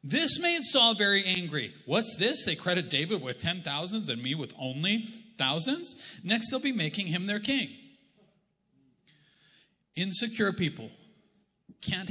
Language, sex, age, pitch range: English, male, 40-59, 155-220 Hz